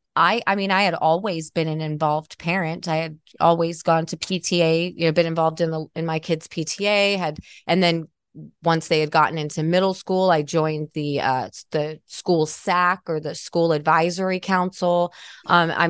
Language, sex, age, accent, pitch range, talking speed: English, female, 30-49, American, 155-180 Hz, 190 wpm